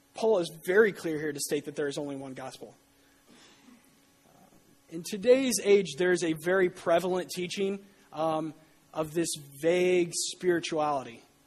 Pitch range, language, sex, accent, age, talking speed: 150-190 Hz, English, male, American, 30-49, 145 wpm